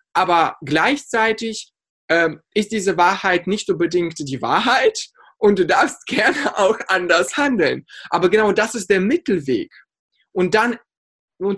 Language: German